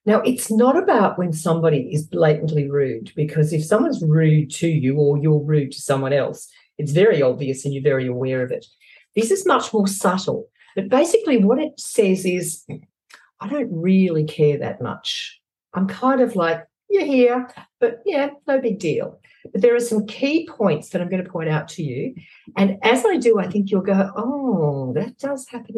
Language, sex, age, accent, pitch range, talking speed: English, female, 50-69, Australian, 155-250 Hz, 195 wpm